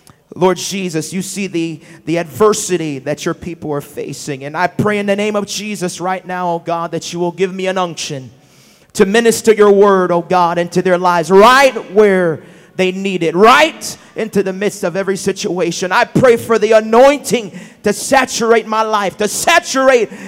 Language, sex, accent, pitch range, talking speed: English, male, American, 195-310 Hz, 185 wpm